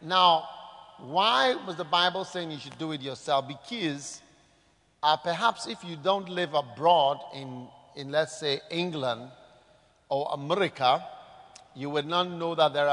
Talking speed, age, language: 150 wpm, 50-69, English